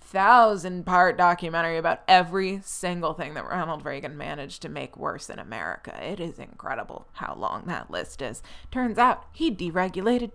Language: English